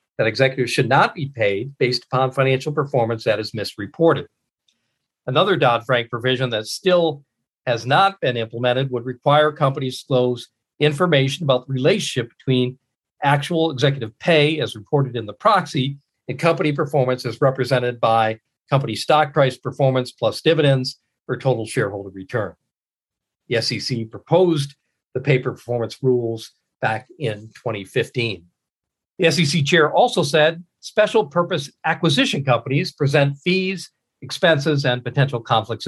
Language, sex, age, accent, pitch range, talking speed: English, male, 50-69, American, 125-155 Hz, 135 wpm